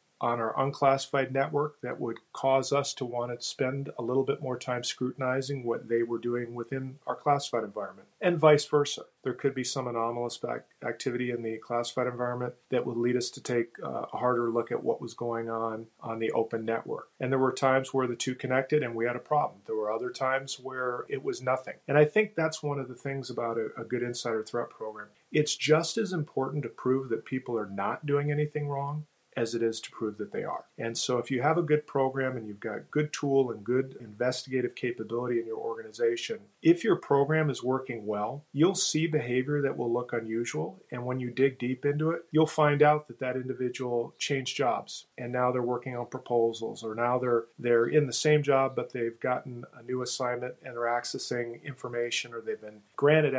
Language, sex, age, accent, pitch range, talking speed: English, male, 40-59, American, 120-145 Hz, 215 wpm